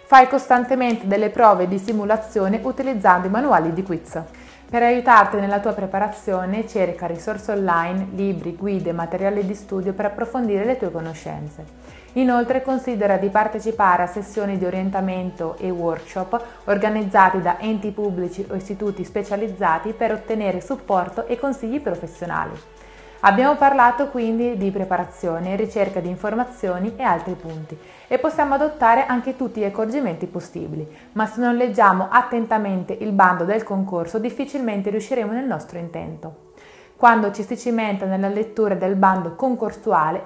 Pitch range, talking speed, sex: 185-235 Hz, 140 wpm, female